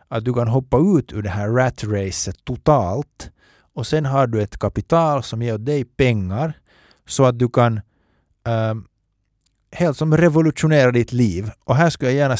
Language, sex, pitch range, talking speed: Finnish, male, 105-135 Hz, 175 wpm